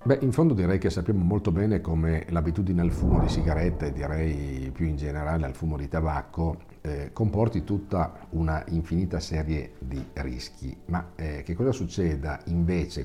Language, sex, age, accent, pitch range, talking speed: Italian, male, 50-69, native, 75-90 Hz, 165 wpm